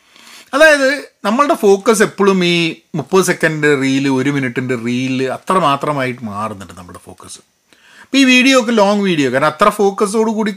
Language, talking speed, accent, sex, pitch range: Malayalam, 150 wpm, native, male, 155-225 Hz